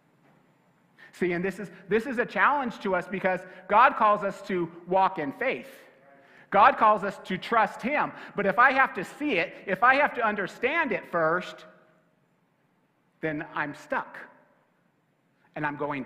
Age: 50-69